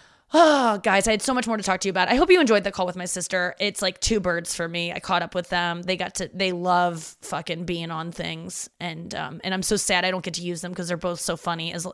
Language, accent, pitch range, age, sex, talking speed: English, American, 175-220 Hz, 20-39, female, 295 wpm